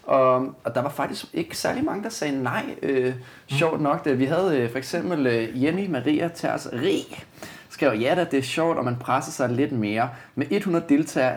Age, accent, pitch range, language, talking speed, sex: 30-49, native, 120-150 Hz, Danish, 210 wpm, male